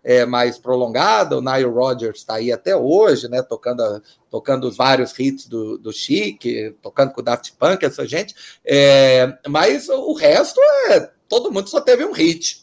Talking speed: 175 wpm